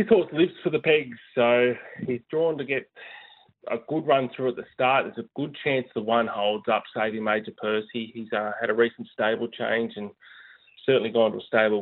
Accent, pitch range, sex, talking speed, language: Australian, 105-120 Hz, male, 210 wpm, English